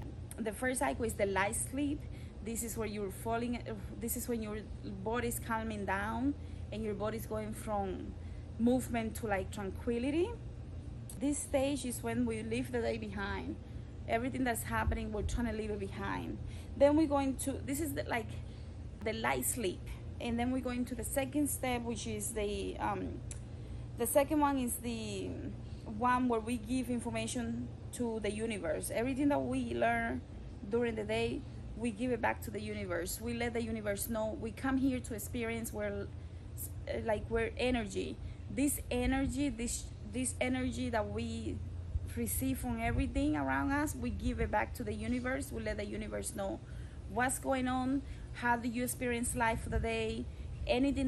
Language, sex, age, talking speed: English, female, 20-39, 170 wpm